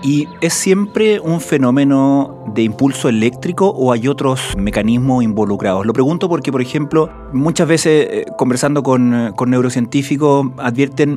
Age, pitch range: 30-49, 120-140 Hz